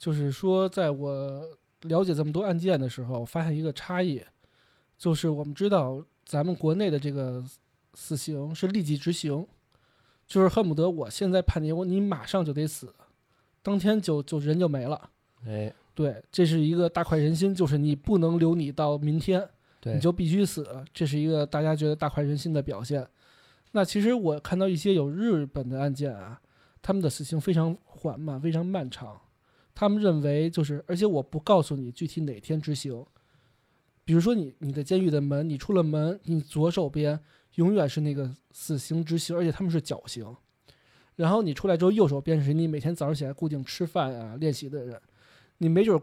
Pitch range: 140-170 Hz